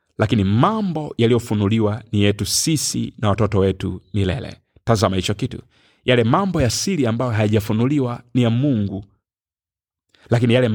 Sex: male